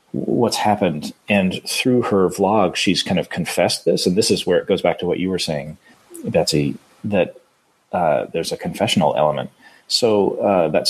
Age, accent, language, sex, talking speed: 30-49, American, English, male, 180 wpm